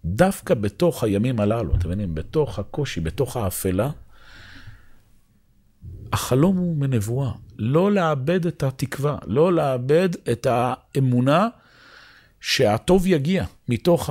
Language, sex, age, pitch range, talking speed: Hebrew, male, 50-69, 100-145 Hz, 100 wpm